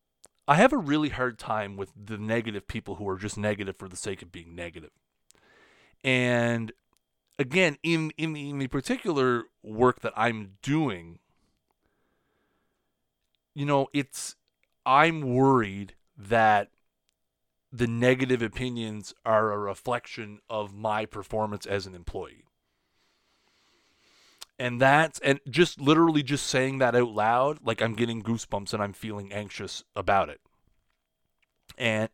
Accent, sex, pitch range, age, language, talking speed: American, male, 100-125 Hz, 30-49, English, 135 wpm